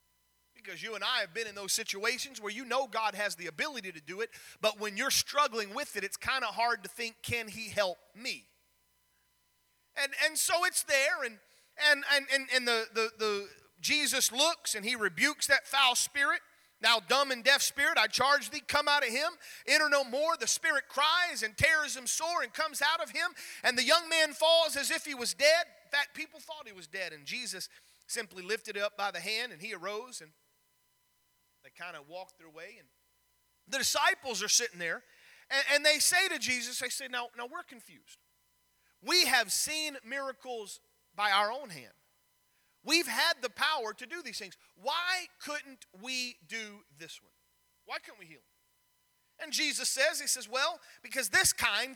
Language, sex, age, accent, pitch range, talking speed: English, male, 30-49, American, 215-300 Hz, 195 wpm